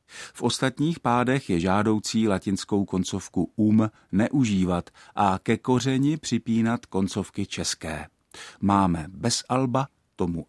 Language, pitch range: Czech, 95-115 Hz